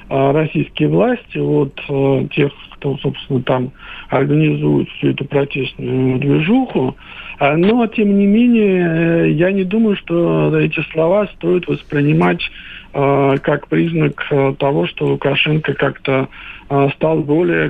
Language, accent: Russian, native